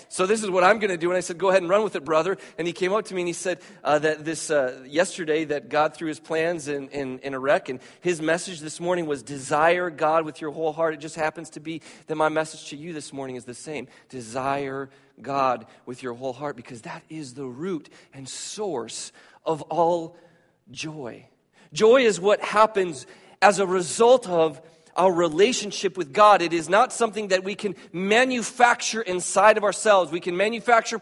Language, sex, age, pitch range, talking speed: English, male, 40-59, 160-220 Hz, 215 wpm